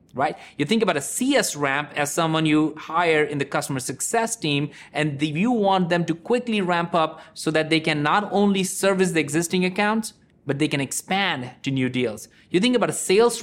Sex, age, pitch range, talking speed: male, 30-49, 145-190 Hz, 205 wpm